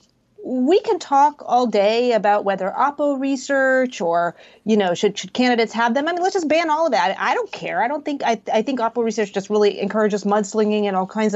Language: English